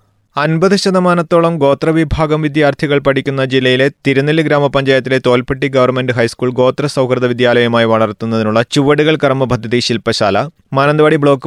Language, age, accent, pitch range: Malayalam, 30-49, native, 110-135 Hz